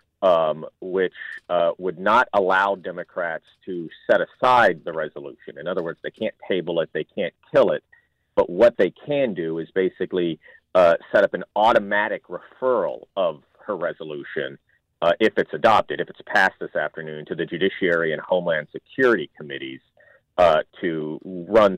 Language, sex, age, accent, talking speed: English, male, 40-59, American, 160 wpm